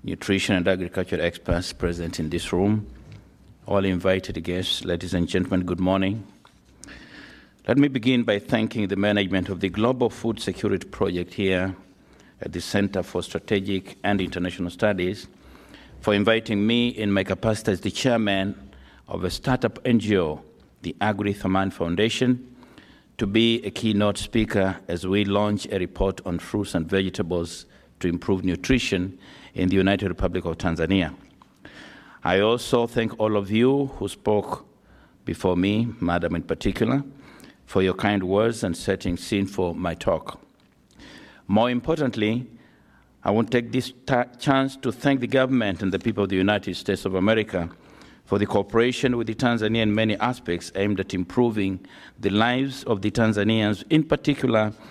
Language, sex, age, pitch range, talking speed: English, male, 60-79, 90-115 Hz, 155 wpm